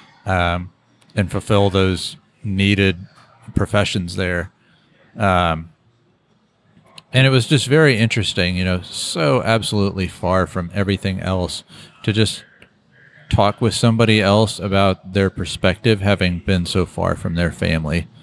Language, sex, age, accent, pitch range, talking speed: English, male, 40-59, American, 90-105 Hz, 125 wpm